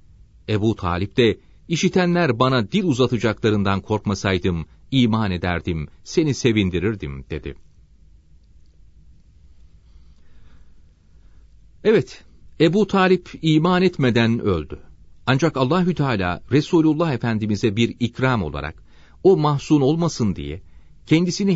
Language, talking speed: Turkish, 90 wpm